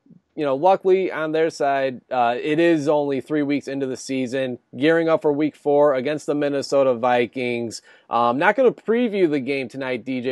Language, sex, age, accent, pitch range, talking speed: English, male, 30-49, American, 130-165 Hz, 200 wpm